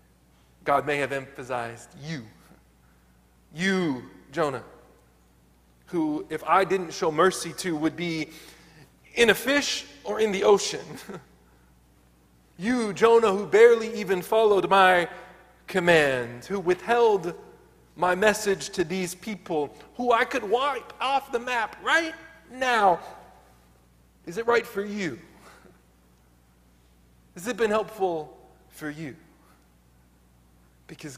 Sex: male